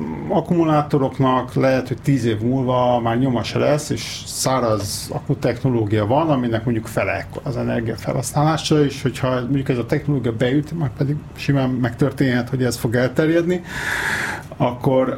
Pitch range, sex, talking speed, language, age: 120-150 Hz, male, 140 wpm, Hungarian, 50-69